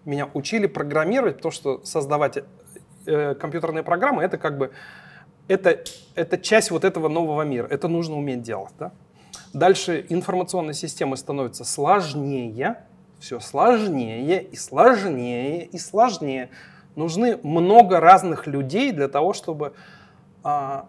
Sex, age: male, 30-49